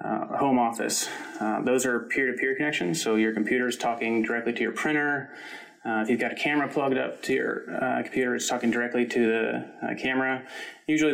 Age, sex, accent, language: 20-39, male, American, English